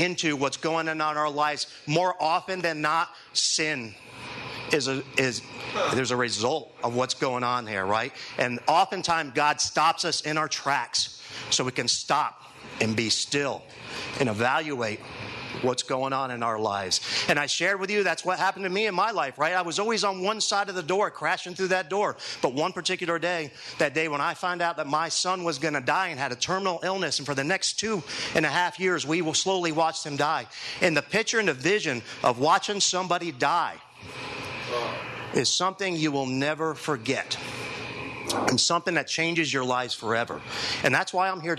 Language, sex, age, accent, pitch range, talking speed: English, male, 50-69, American, 130-180 Hz, 200 wpm